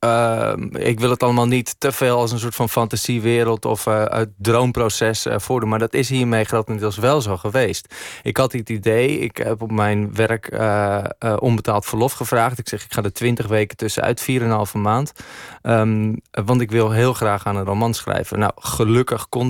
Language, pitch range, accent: Dutch, 105-125 Hz, Dutch